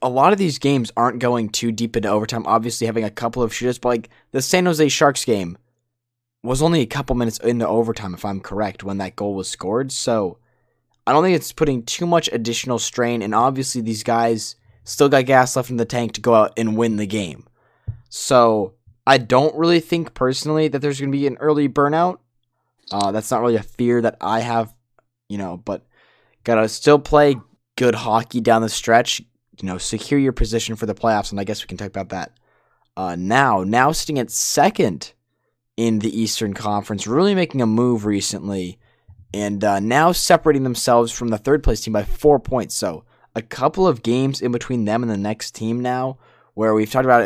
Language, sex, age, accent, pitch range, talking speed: English, male, 20-39, American, 110-130 Hz, 205 wpm